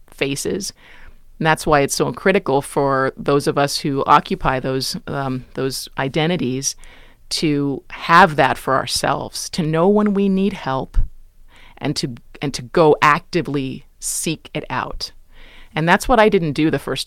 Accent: American